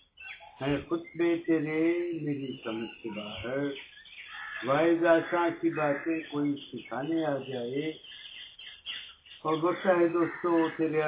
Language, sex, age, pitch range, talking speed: Urdu, male, 60-79, 125-165 Hz, 65 wpm